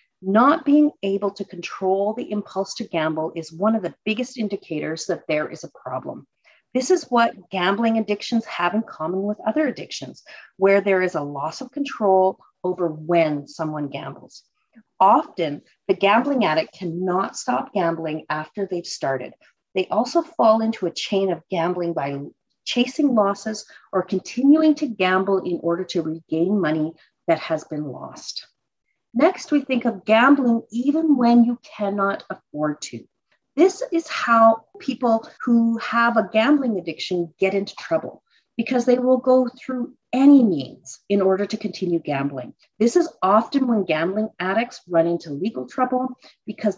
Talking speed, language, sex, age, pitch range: 155 wpm, English, female, 40-59, 170-235 Hz